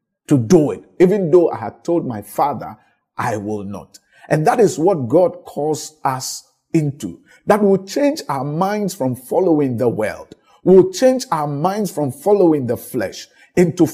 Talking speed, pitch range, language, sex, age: 170 wpm, 160-255 Hz, English, male, 50-69